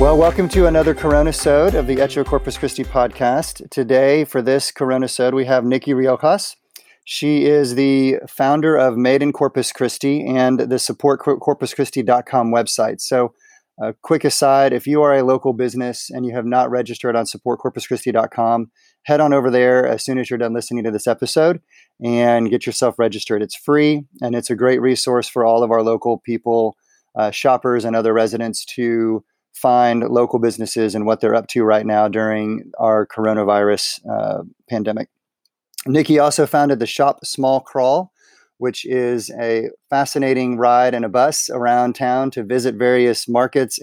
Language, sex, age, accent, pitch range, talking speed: English, male, 30-49, American, 115-140 Hz, 170 wpm